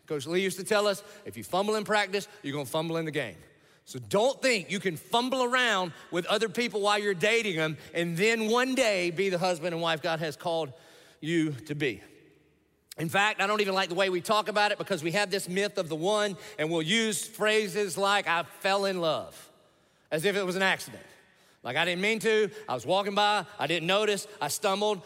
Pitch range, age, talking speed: 155-205 Hz, 40-59, 230 wpm